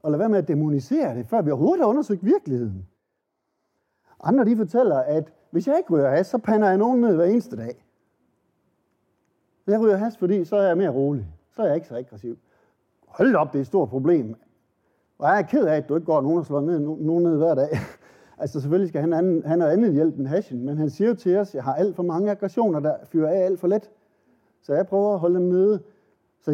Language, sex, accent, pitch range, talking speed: Danish, male, native, 140-200 Hz, 230 wpm